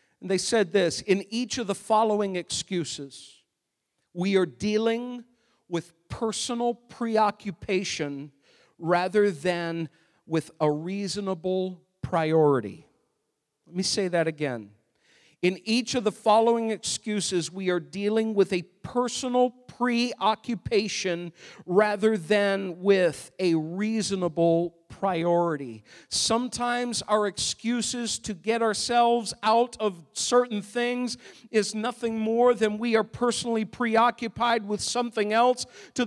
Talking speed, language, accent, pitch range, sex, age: 115 wpm, English, American, 185-240 Hz, male, 50-69